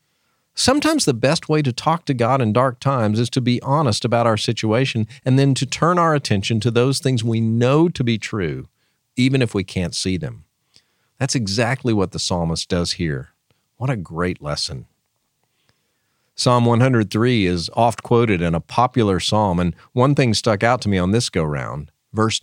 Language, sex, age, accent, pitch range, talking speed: English, male, 40-59, American, 95-130 Hz, 185 wpm